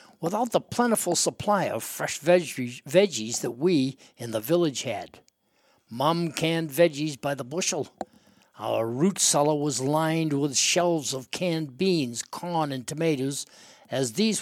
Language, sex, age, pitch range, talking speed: English, male, 60-79, 130-165 Hz, 140 wpm